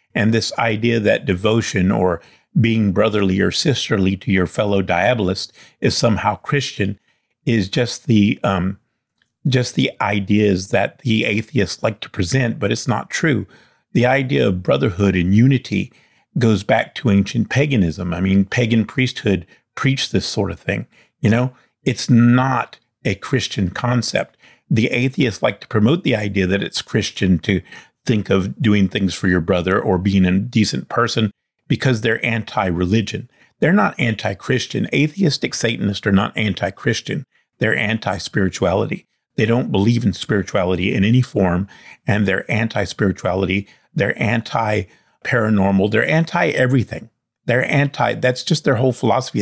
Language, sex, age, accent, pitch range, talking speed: English, male, 50-69, American, 100-125 Hz, 145 wpm